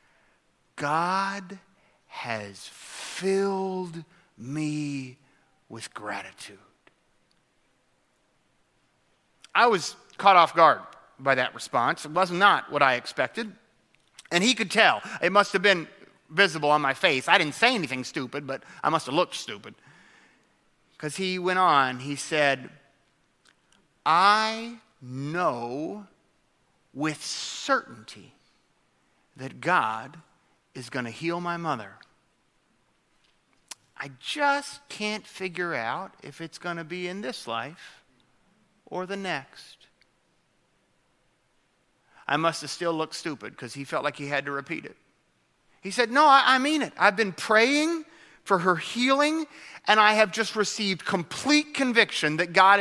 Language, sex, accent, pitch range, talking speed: English, male, American, 150-205 Hz, 130 wpm